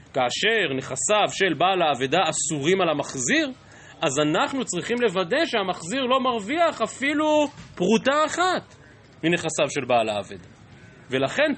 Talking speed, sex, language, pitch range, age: 120 wpm, male, Hebrew, 150-240 Hz, 30-49